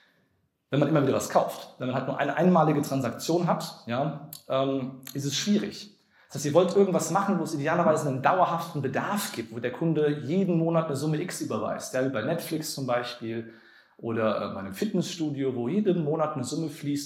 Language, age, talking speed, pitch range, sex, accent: German, 40-59, 195 wpm, 130-170 Hz, male, German